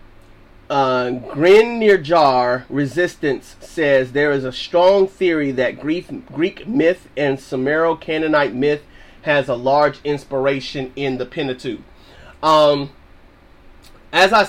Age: 30-49